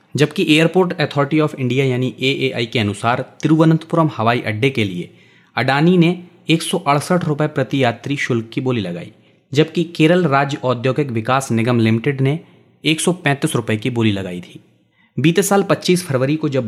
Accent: native